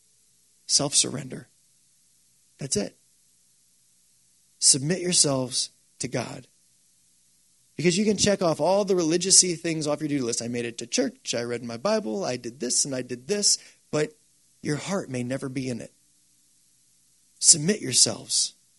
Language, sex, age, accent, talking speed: English, male, 30-49, American, 145 wpm